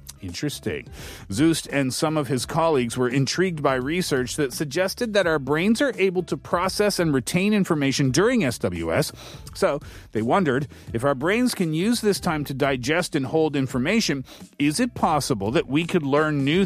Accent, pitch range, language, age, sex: American, 130-175 Hz, Korean, 40-59, male